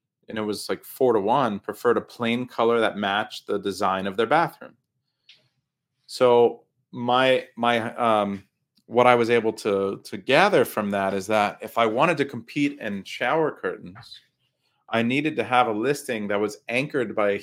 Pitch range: 105-135 Hz